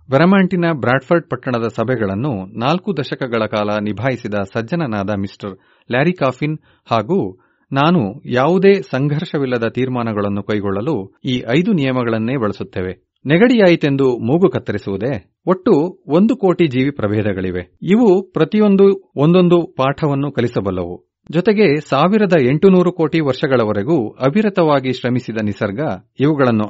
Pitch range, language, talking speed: 110-165 Hz, Kannada, 100 wpm